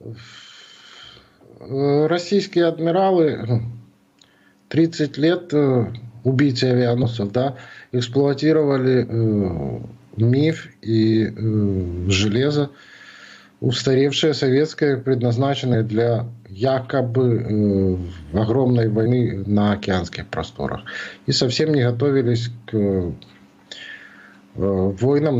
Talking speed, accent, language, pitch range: 60 wpm, native, Russian, 105-130 Hz